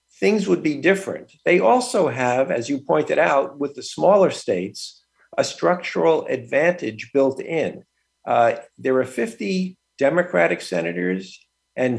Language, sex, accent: English, male, American